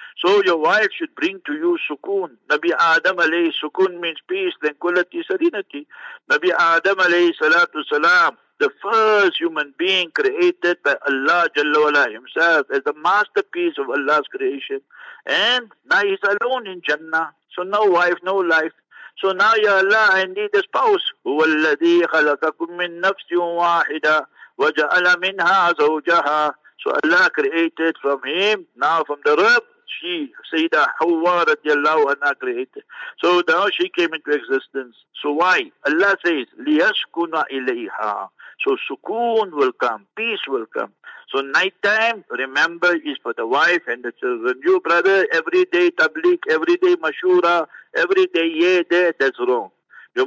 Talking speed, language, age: 135 wpm, English, 60-79